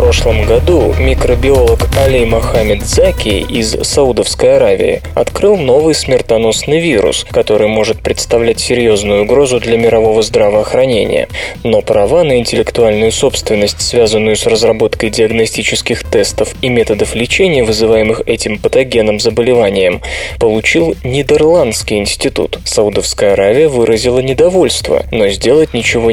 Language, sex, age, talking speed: Russian, male, 20-39, 115 wpm